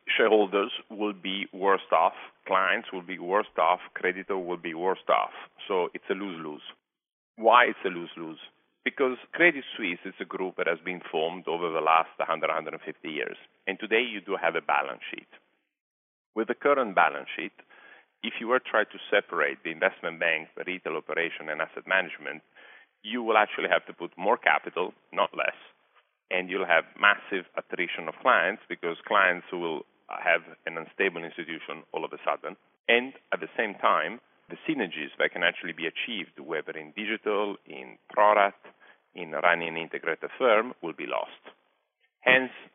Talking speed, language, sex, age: 170 wpm, English, male, 40-59